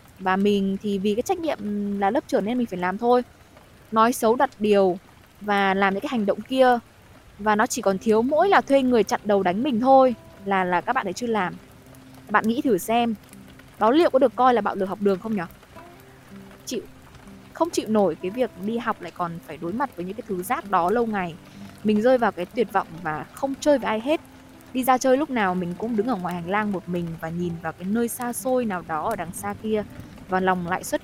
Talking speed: 245 wpm